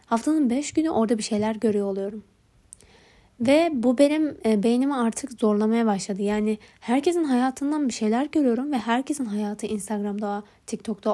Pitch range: 215-285 Hz